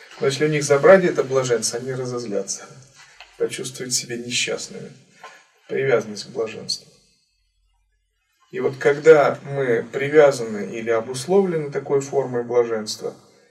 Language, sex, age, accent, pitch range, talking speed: Russian, male, 20-39, native, 120-160 Hz, 110 wpm